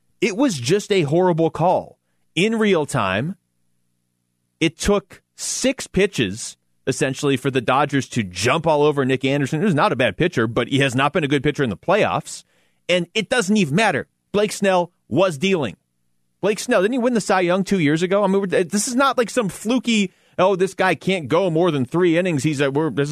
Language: English